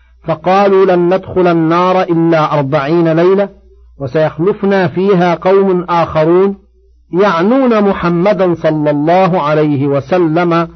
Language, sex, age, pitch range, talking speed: Arabic, male, 50-69, 150-185 Hz, 95 wpm